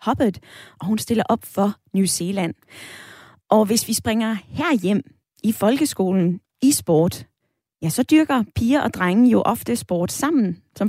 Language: Danish